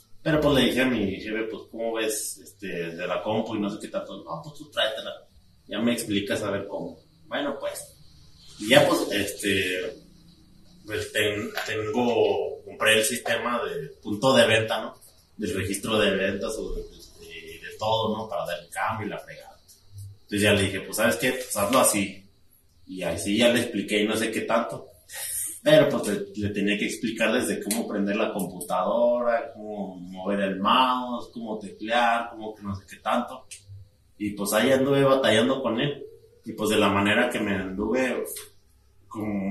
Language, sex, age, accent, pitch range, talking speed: Spanish, male, 30-49, Mexican, 100-125 Hz, 190 wpm